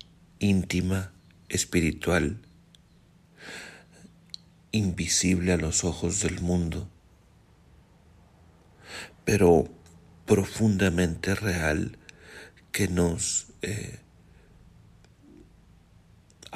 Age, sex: 50-69, male